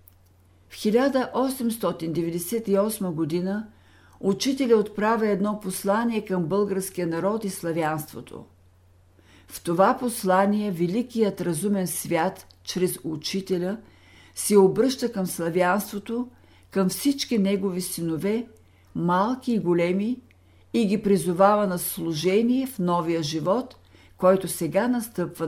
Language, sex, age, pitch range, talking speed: Bulgarian, female, 60-79, 150-215 Hz, 100 wpm